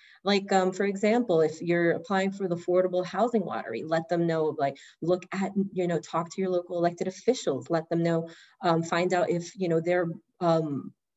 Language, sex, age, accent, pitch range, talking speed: English, female, 30-49, American, 170-210 Hz, 200 wpm